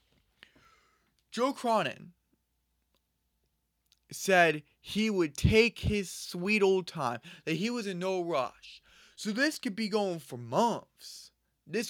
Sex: male